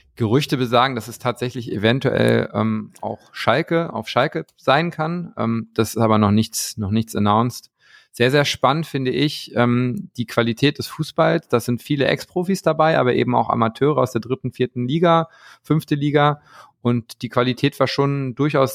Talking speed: 175 wpm